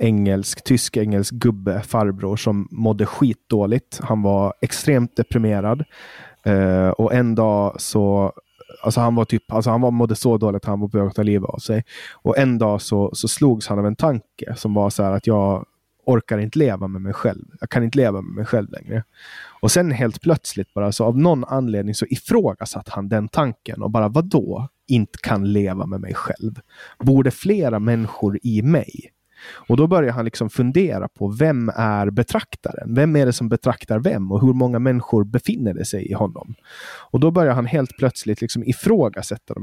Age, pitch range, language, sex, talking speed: 20-39, 100-125 Hz, Swedish, male, 195 wpm